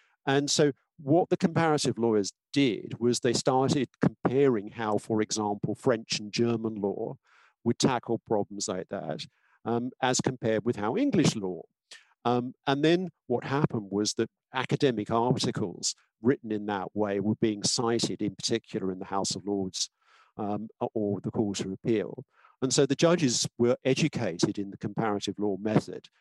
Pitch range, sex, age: 105-135 Hz, male, 50-69